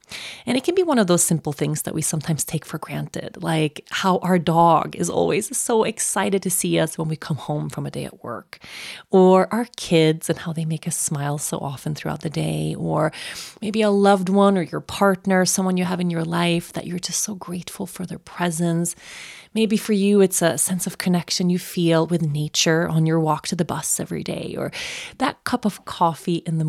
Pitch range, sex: 155-195 Hz, female